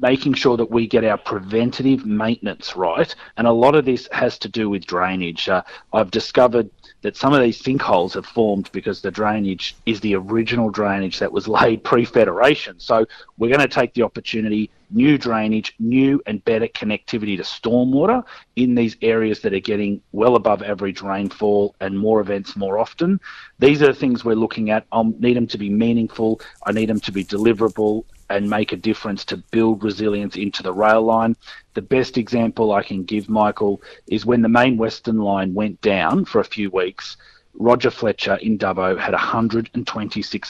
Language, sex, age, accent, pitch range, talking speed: English, male, 30-49, Australian, 100-115 Hz, 185 wpm